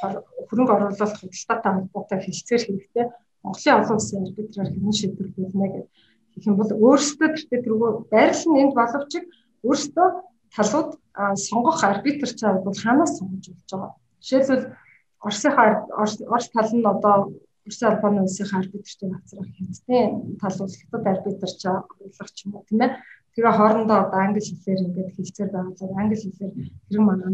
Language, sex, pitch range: Russian, female, 195-235 Hz